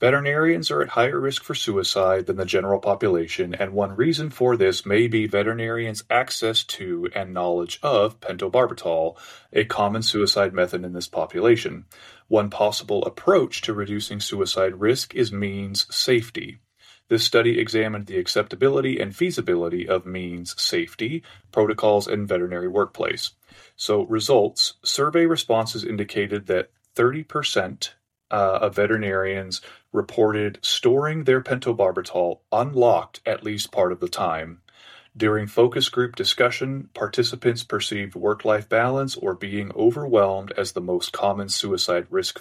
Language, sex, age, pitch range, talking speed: English, male, 30-49, 100-125 Hz, 135 wpm